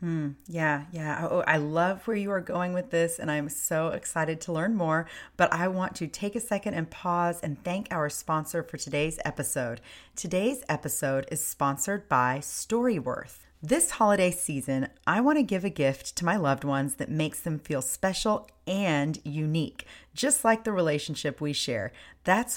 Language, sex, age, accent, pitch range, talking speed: English, female, 40-59, American, 150-205 Hz, 180 wpm